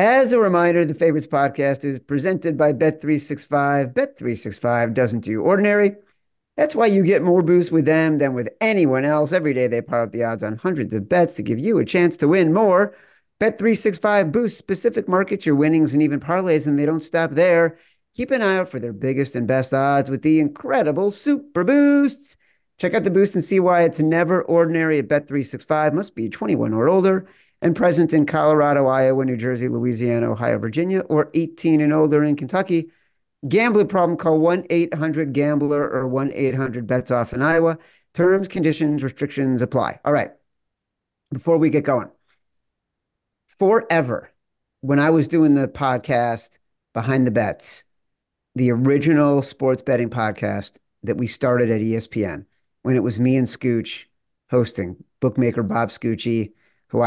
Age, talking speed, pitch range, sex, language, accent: 40-59, 165 wpm, 125-170 Hz, male, English, American